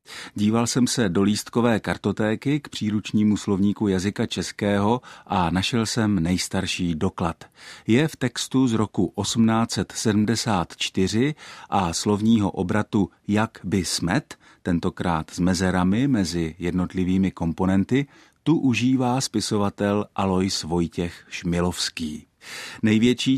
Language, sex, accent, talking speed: Czech, male, native, 105 wpm